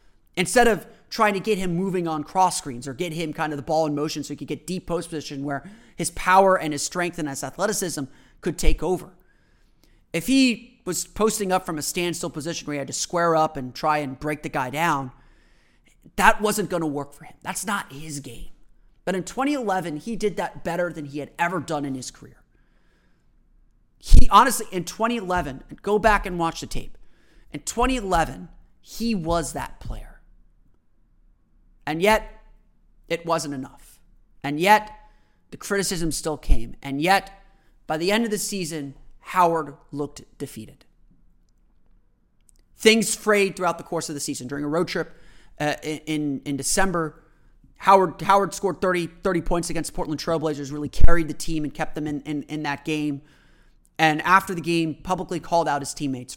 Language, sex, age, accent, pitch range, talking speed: English, male, 30-49, American, 145-185 Hz, 185 wpm